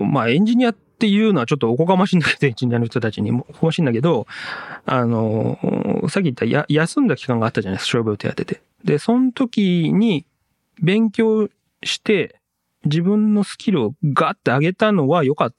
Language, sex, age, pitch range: Japanese, male, 40-59, 120-195 Hz